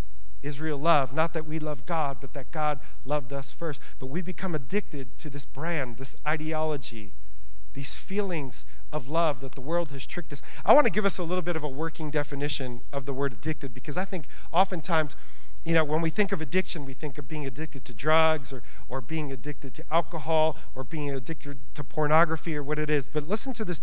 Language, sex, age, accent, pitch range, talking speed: English, male, 40-59, American, 135-190 Hz, 215 wpm